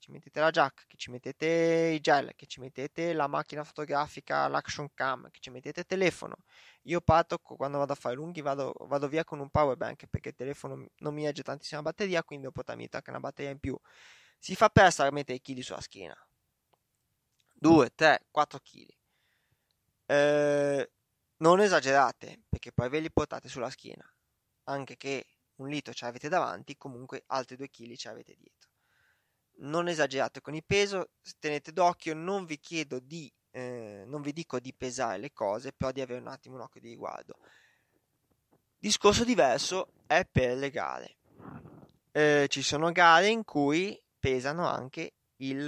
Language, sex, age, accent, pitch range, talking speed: Italian, male, 20-39, native, 130-160 Hz, 170 wpm